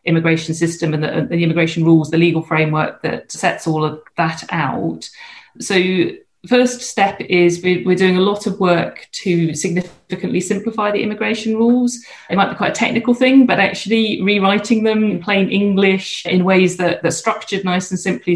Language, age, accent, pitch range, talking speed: English, 40-59, British, 165-190 Hz, 175 wpm